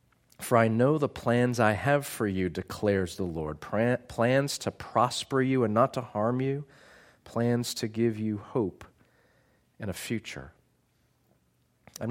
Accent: American